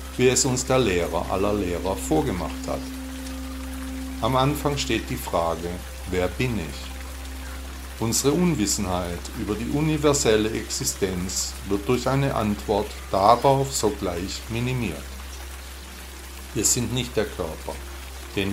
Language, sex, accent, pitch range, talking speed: German, male, German, 65-110 Hz, 115 wpm